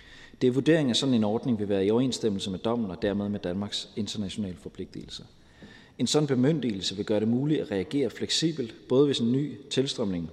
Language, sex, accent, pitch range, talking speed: Danish, male, native, 105-130 Hz, 190 wpm